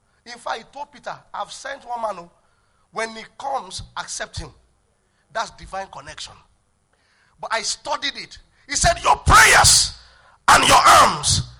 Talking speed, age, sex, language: 150 wpm, 40-59, male, English